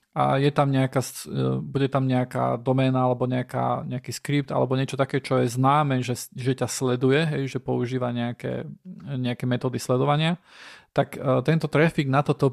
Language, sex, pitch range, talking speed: Slovak, male, 125-150 Hz, 170 wpm